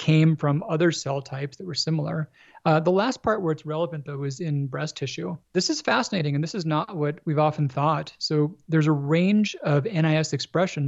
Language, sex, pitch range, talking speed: English, male, 140-165 Hz, 210 wpm